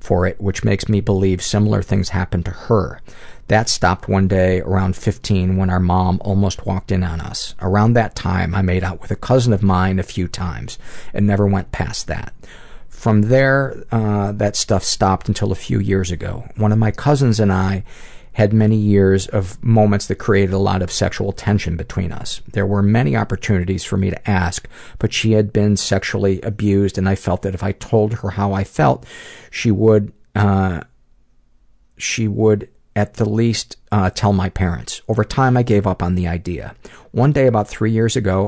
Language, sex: English, male